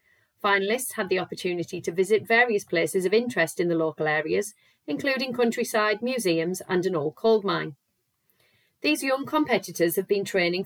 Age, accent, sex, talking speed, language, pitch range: 40-59, British, female, 160 wpm, English, 165-230 Hz